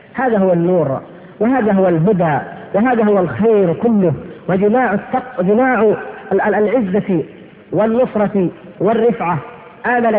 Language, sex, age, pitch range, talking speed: Arabic, female, 40-59, 190-245 Hz, 90 wpm